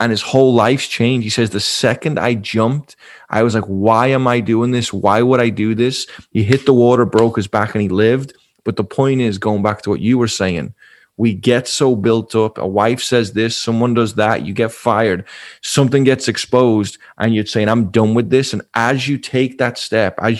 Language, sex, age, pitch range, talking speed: English, male, 20-39, 110-125 Hz, 225 wpm